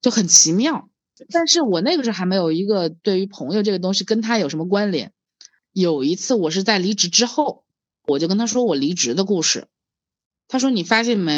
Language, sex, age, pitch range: Chinese, female, 20-39, 170-245 Hz